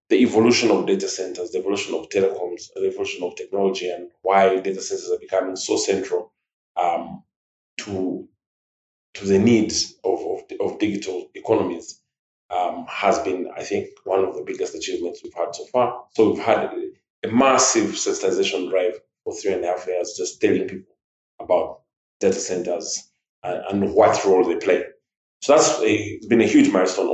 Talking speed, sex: 170 wpm, male